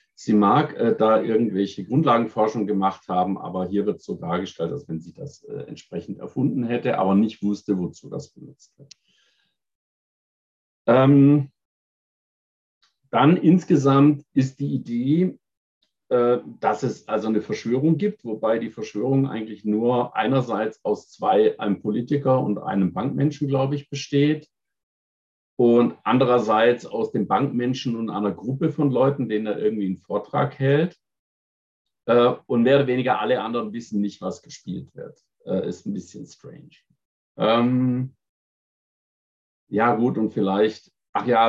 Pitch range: 100-135 Hz